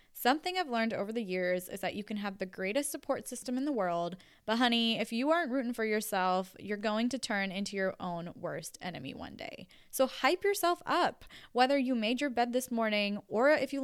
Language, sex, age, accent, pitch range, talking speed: English, female, 10-29, American, 190-260 Hz, 220 wpm